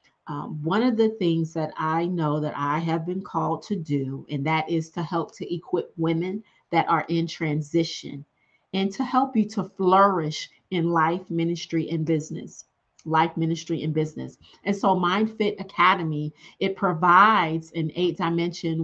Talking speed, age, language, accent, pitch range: 160 wpm, 40-59, English, American, 155-180 Hz